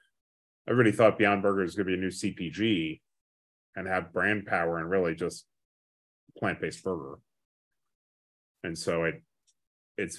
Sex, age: male, 30-49